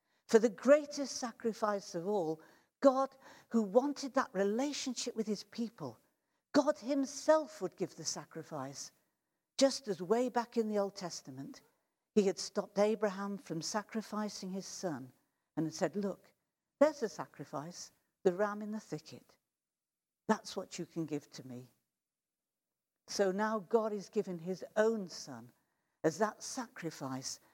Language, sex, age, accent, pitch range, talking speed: English, female, 50-69, British, 170-240 Hz, 145 wpm